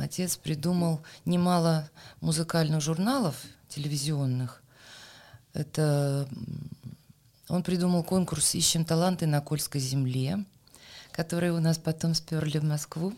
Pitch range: 130-170 Hz